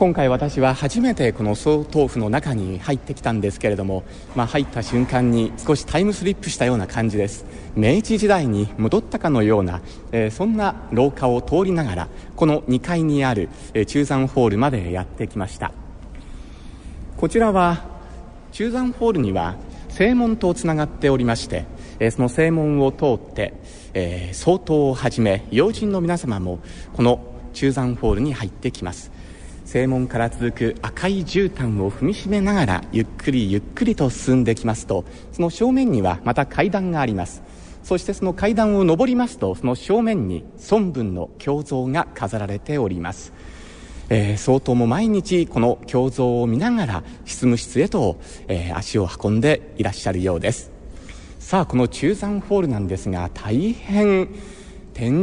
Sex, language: male, Japanese